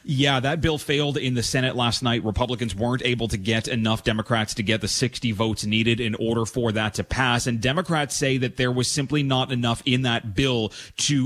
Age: 30-49